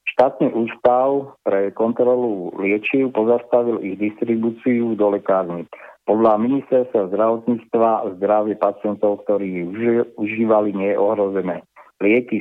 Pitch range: 100-115 Hz